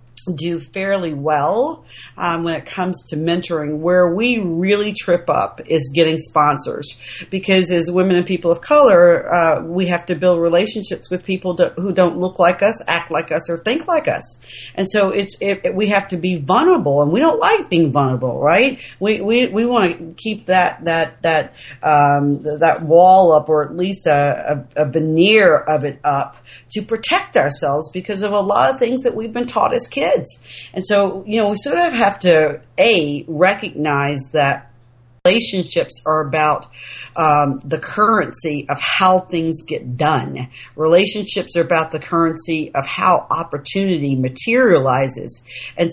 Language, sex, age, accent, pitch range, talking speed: English, female, 40-59, American, 155-195 Hz, 175 wpm